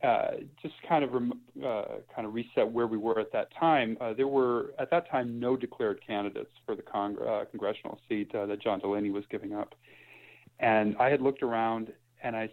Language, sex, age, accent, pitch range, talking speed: English, male, 40-59, American, 105-120 Hz, 210 wpm